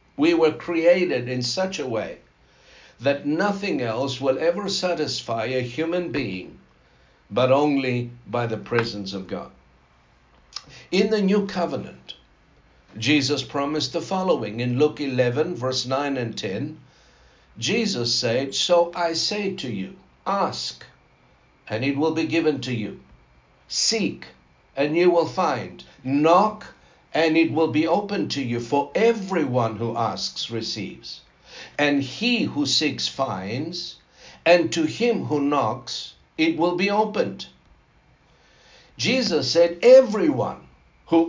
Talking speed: 130 wpm